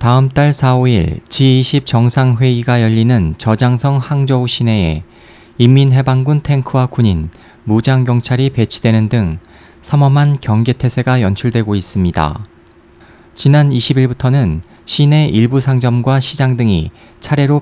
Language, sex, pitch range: Korean, male, 110-135 Hz